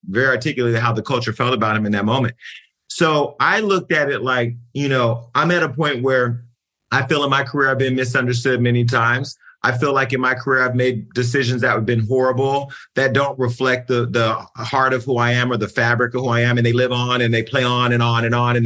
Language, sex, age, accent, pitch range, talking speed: English, male, 40-59, American, 120-150 Hz, 250 wpm